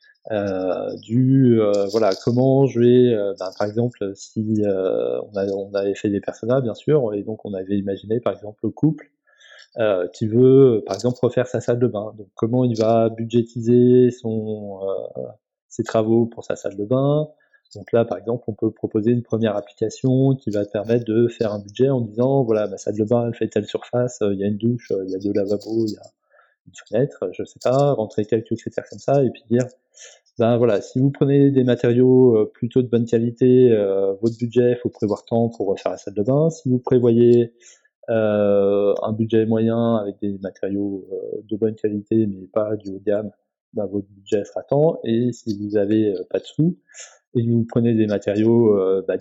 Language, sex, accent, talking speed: French, male, French, 215 wpm